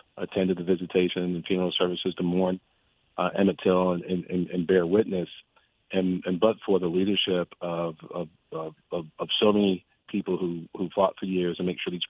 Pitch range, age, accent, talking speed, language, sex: 85-95 Hz, 40-59, American, 190 wpm, English, male